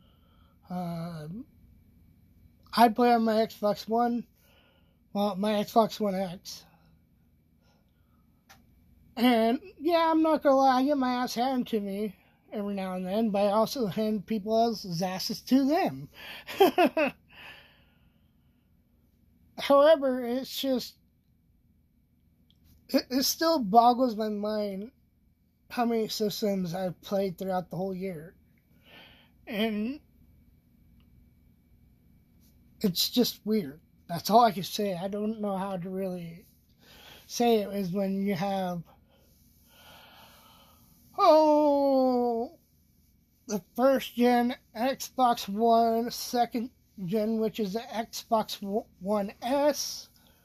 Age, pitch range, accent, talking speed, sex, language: 20-39, 190-240 Hz, American, 110 wpm, male, English